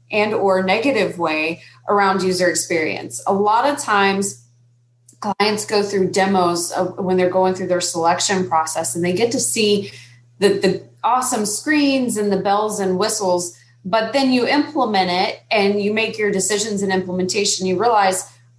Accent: American